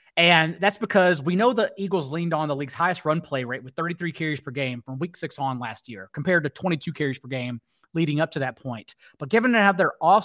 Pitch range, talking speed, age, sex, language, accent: 145-190 Hz, 245 wpm, 30-49, male, English, American